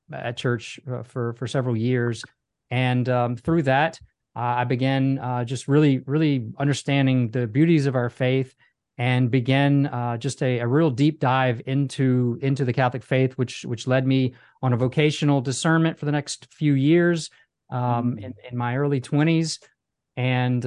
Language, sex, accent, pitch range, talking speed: English, male, American, 125-145 Hz, 170 wpm